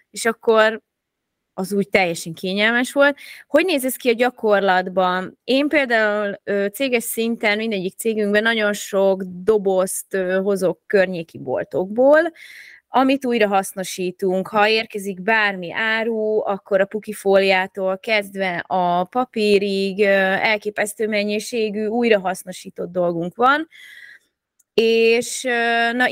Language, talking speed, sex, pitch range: Hungarian, 105 wpm, female, 200-240 Hz